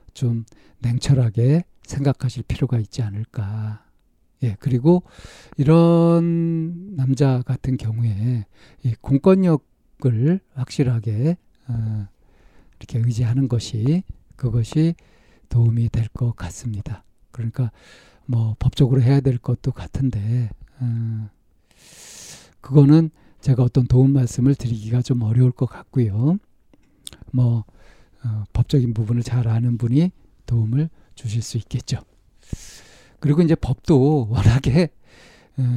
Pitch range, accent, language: 115-140 Hz, native, Korean